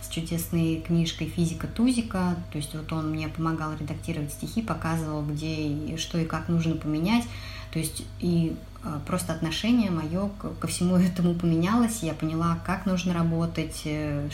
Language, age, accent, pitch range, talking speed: Russian, 20-39, native, 150-175 Hz, 145 wpm